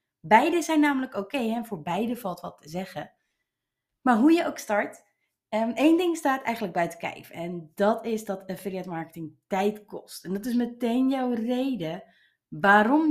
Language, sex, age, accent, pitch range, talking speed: Dutch, female, 30-49, Dutch, 175-240 Hz, 170 wpm